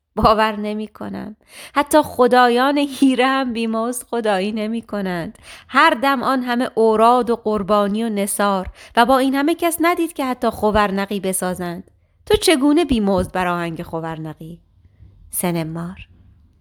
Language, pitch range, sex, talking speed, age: Persian, 180-250 Hz, female, 130 wpm, 30-49